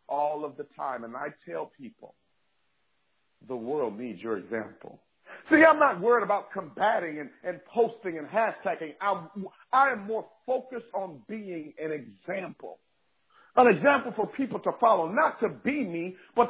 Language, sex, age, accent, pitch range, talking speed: English, male, 50-69, American, 185-250 Hz, 160 wpm